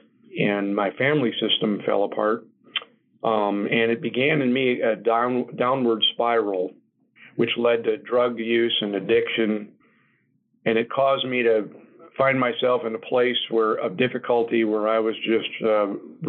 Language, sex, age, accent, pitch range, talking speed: English, male, 40-59, American, 110-120 Hz, 150 wpm